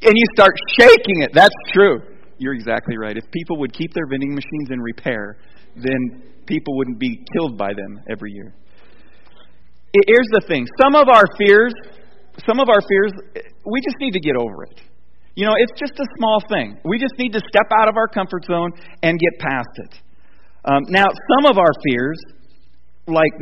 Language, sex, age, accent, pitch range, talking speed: English, male, 40-59, American, 125-180 Hz, 190 wpm